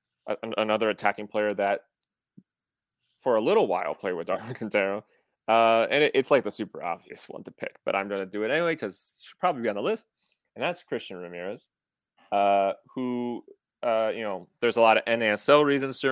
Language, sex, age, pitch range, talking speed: English, male, 30-49, 100-120 Hz, 195 wpm